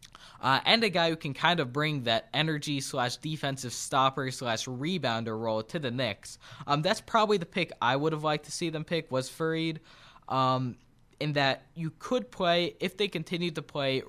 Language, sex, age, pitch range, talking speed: English, male, 20-39, 120-150 Hz, 195 wpm